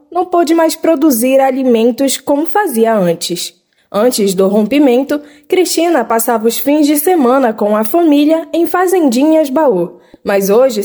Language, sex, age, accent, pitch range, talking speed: Portuguese, female, 10-29, Brazilian, 225-315 Hz, 140 wpm